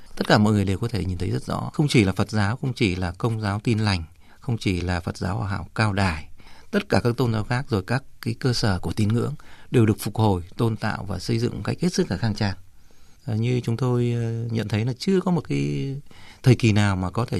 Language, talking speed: Vietnamese, 270 wpm